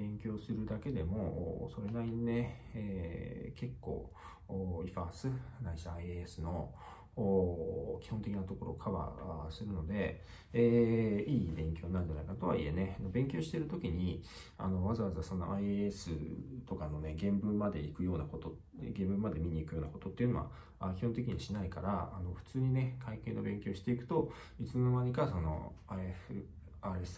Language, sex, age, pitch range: Japanese, male, 40-59, 85-110 Hz